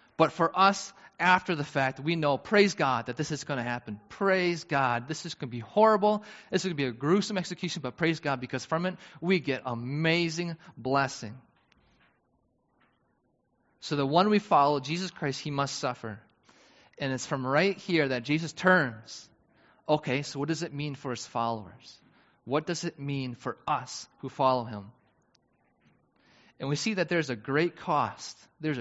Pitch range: 130-175 Hz